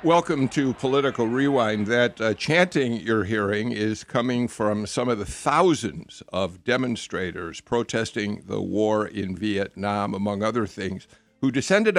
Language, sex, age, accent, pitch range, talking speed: English, male, 60-79, American, 105-130 Hz, 140 wpm